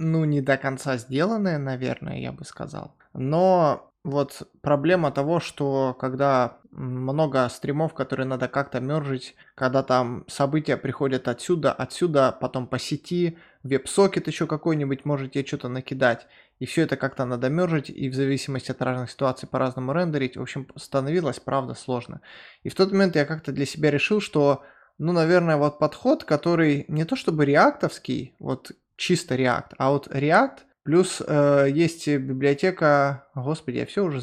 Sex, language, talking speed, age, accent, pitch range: male, Russian, 155 wpm, 20-39, native, 135-165 Hz